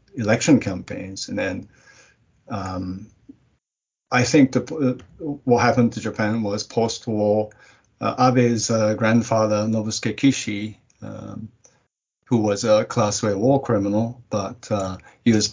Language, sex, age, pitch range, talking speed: English, male, 50-69, 105-125 Hz, 125 wpm